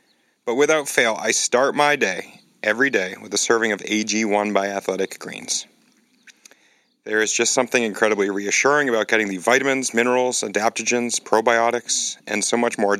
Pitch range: 100-120 Hz